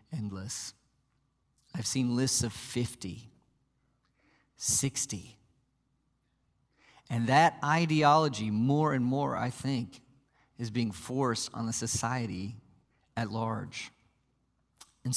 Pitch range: 115-155 Hz